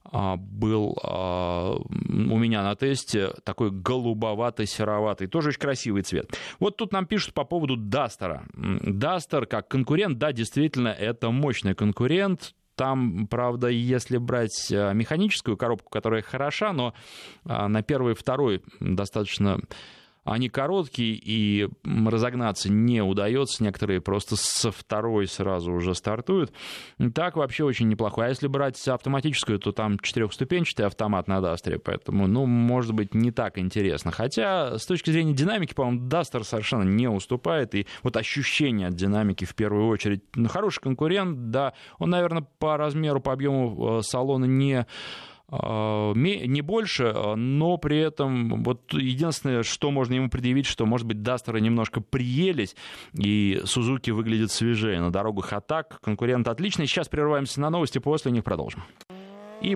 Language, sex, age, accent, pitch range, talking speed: Russian, male, 20-39, native, 105-145 Hz, 140 wpm